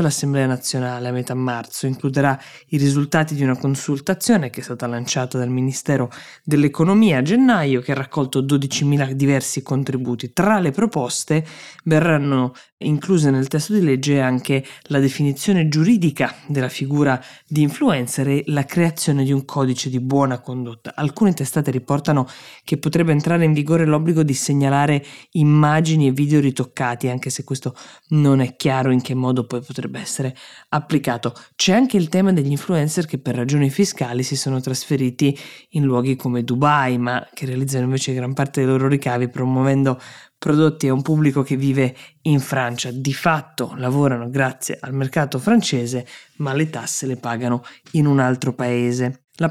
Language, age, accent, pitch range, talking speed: Italian, 20-39, native, 130-155 Hz, 160 wpm